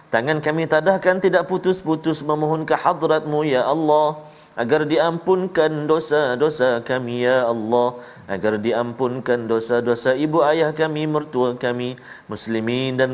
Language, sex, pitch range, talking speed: Malayalam, male, 125-160 Hz, 120 wpm